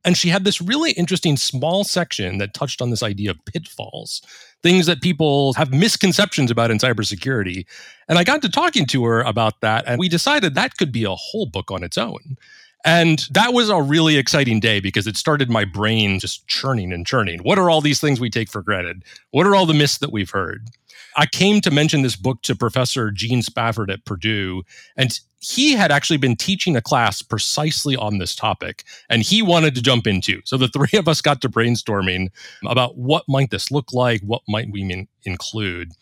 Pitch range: 105-155 Hz